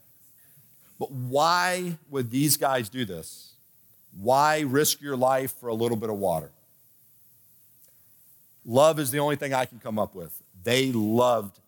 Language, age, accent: English, 50-69, American